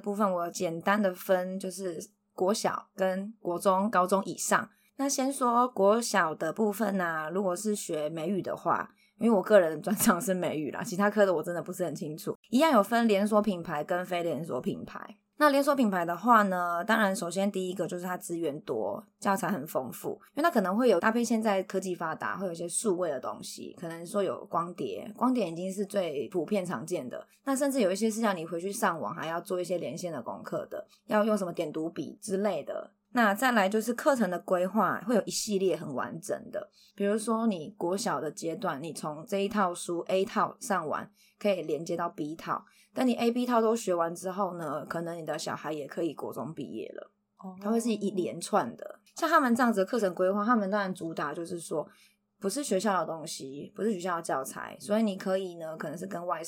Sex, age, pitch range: female, 20-39, 175-210 Hz